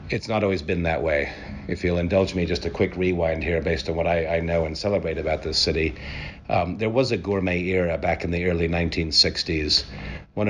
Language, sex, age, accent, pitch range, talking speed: English, male, 50-69, American, 80-95 Hz, 215 wpm